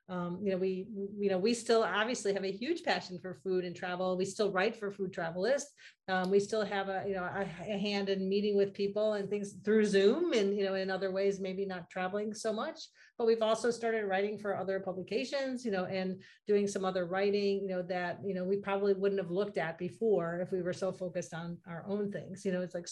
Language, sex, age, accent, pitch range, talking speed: English, female, 40-59, American, 180-205 Hz, 240 wpm